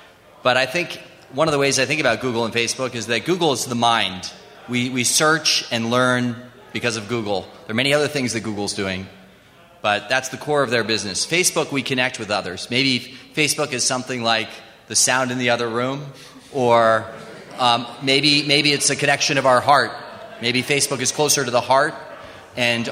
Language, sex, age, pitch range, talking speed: English, male, 30-49, 110-130 Hz, 200 wpm